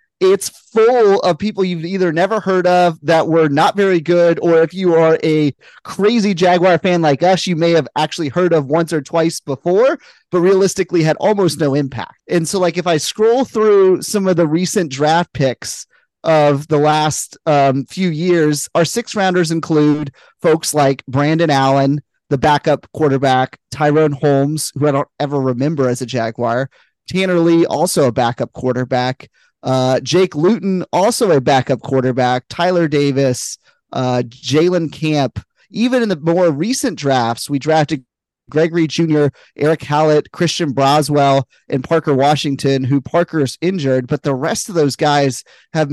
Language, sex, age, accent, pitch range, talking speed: English, male, 30-49, American, 140-175 Hz, 165 wpm